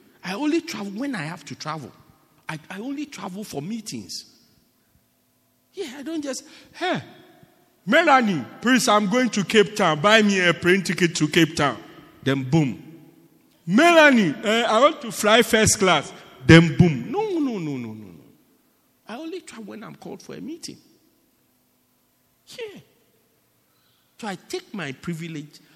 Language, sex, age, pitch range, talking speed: English, male, 50-69, 150-245 Hz, 155 wpm